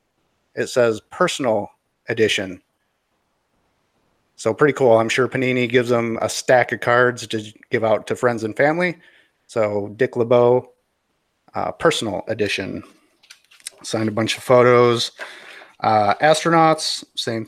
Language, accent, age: English, American, 30-49